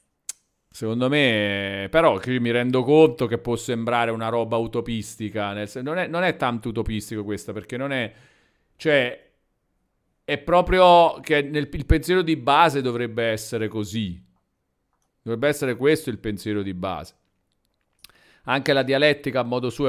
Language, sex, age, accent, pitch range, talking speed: Italian, male, 40-59, native, 105-135 Hz, 145 wpm